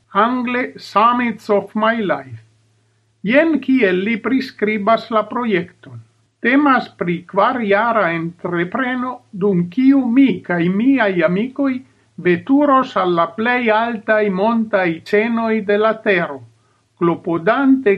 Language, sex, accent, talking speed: Spanish, male, Italian, 100 wpm